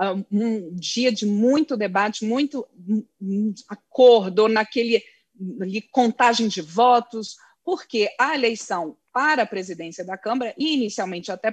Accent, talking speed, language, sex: Brazilian, 115 wpm, Portuguese, female